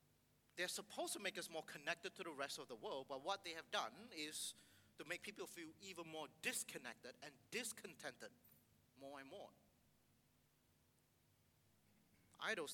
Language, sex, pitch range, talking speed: English, male, 140-195 Hz, 150 wpm